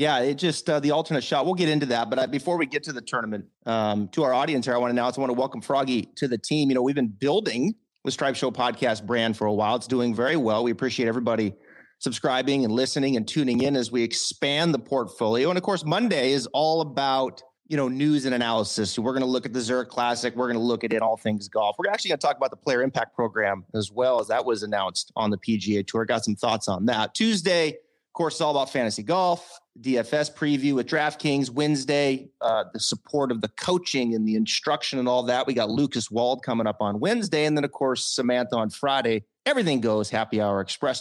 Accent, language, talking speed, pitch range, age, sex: American, English, 245 wpm, 115-150 Hz, 30-49, male